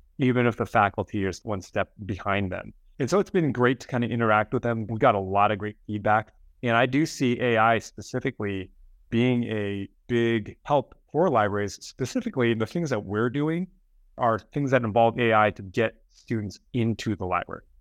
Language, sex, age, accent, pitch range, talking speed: English, male, 30-49, American, 100-120 Hz, 190 wpm